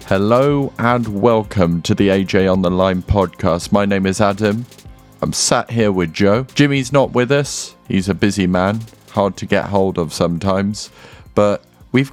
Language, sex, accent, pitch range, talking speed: English, male, British, 85-105 Hz, 175 wpm